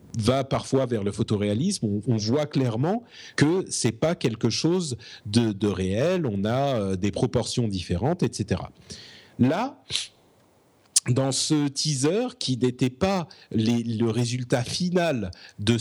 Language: French